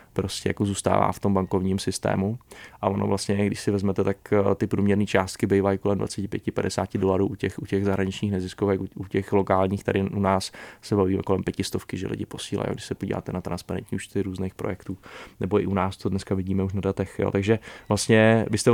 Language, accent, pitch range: Czech, native, 100-110 Hz